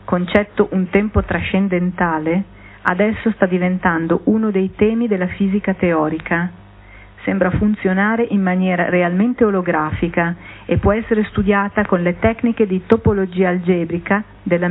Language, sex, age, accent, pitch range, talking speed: Italian, female, 40-59, native, 170-210 Hz, 120 wpm